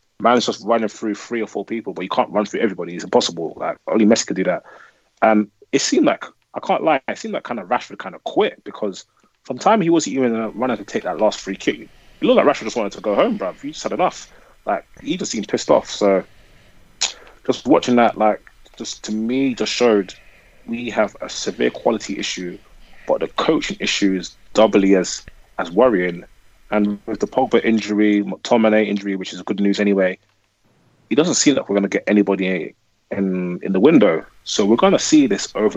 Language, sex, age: English, male, 20-39